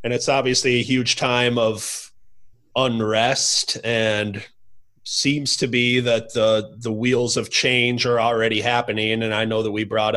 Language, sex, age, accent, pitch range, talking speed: English, male, 30-49, American, 110-140 Hz, 160 wpm